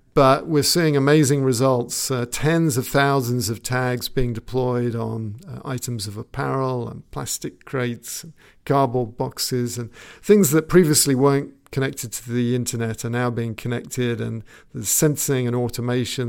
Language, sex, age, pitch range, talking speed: English, male, 50-69, 120-140 Hz, 150 wpm